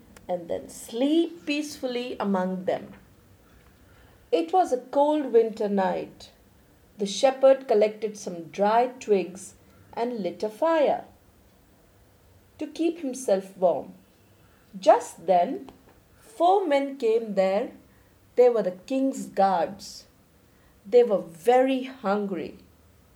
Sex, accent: female, Indian